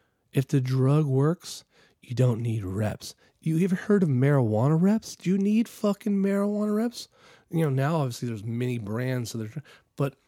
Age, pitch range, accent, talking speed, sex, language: 40-59, 115-155 Hz, American, 170 wpm, male, English